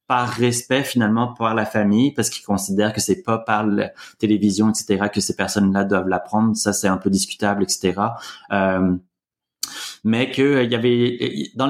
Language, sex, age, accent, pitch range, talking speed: French, male, 30-49, French, 100-120 Hz, 185 wpm